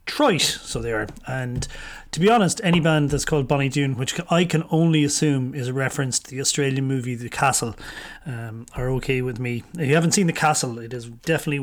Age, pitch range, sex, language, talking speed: 30-49, 130-160 Hz, male, English, 215 wpm